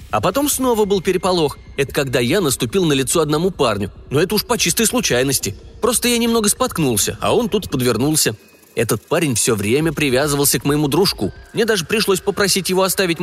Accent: native